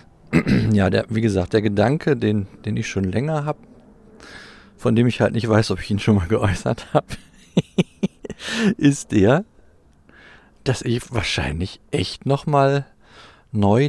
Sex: male